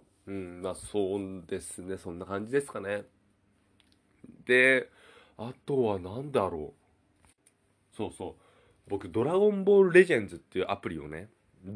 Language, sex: Japanese, male